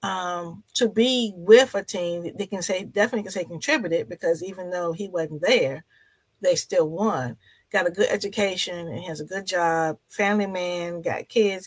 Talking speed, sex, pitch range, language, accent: 185 wpm, female, 175-230 Hz, English, American